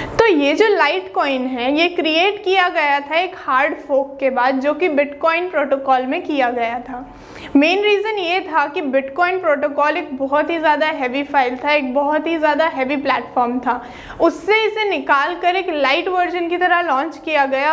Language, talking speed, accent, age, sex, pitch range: Hindi, 80 wpm, native, 20-39, female, 275-350 Hz